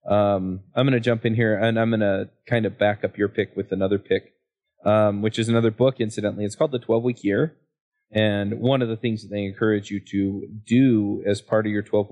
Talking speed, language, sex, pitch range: 240 wpm, English, male, 100-115 Hz